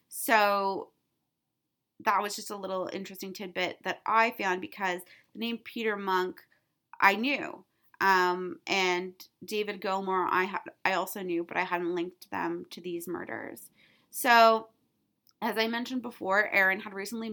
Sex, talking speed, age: female, 150 wpm, 20-39